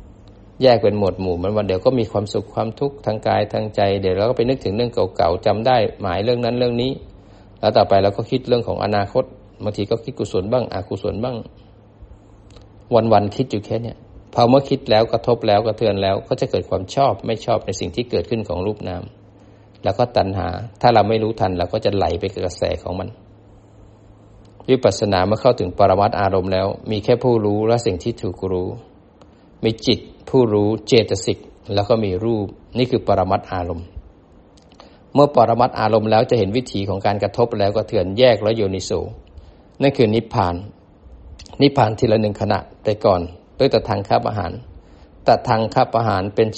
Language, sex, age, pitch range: Thai, male, 20-39, 95-115 Hz